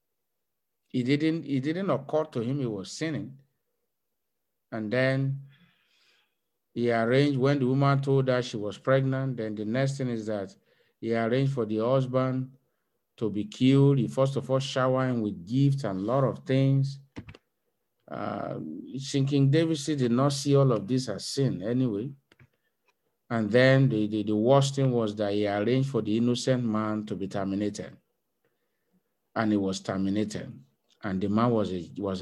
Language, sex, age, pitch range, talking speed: English, male, 50-69, 115-185 Hz, 170 wpm